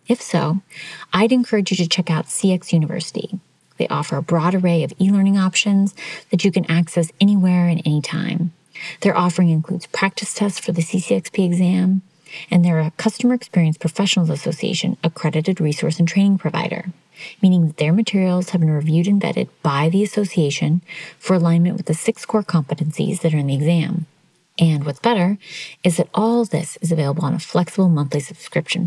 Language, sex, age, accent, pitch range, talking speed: English, female, 30-49, American, 165-195 Hz, 175 wpm